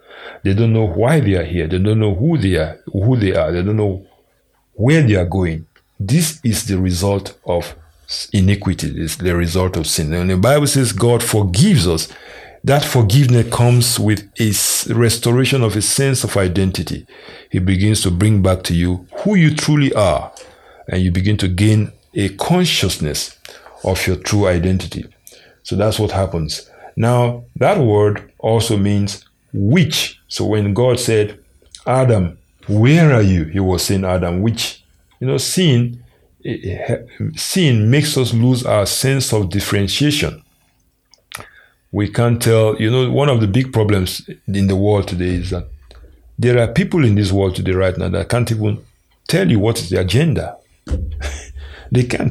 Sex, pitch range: male, 90-120 Hz